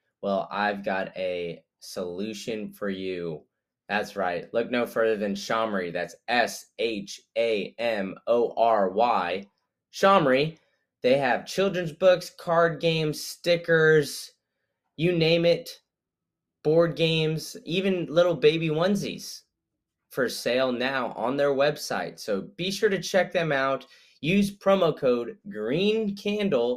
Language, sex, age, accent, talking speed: English, male, 20-39, American, 110 wpm